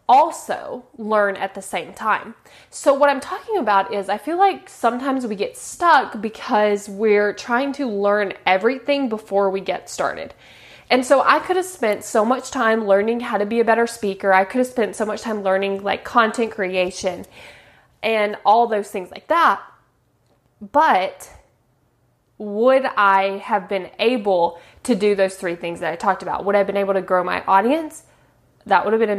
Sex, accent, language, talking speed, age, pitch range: female, American, English, 185 wpm, 20-39, 195-245 Hz